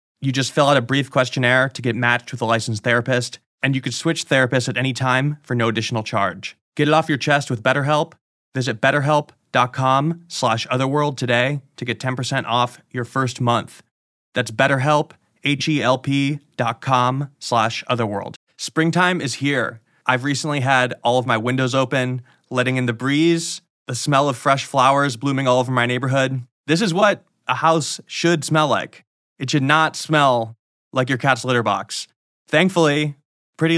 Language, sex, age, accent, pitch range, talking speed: English, male, 20-39, American, 125-145 Hz, 160 wpm